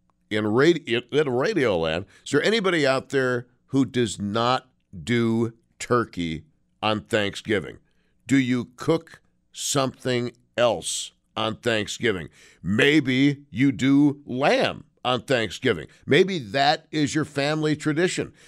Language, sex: English, male